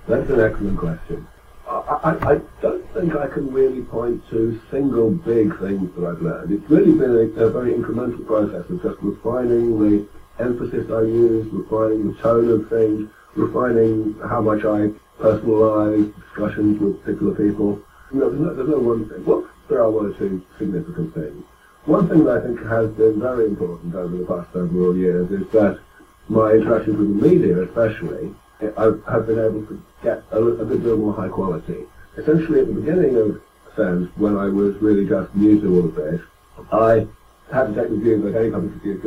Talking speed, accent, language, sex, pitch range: 190 wpm, British, English, male, 95-110 Hz